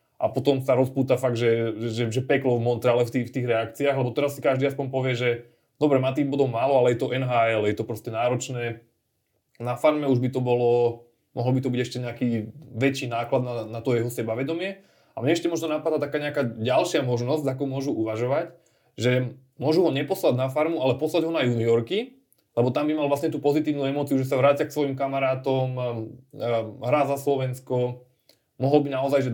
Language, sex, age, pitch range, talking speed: Slovak, male, 20-39, 120-140 Hz, 200 wpm